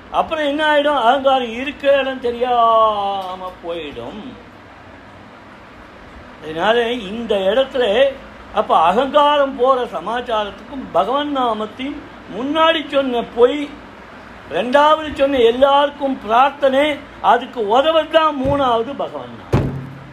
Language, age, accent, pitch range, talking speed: Tamil, 60-79, native, 230-280 Hz, 65 wpm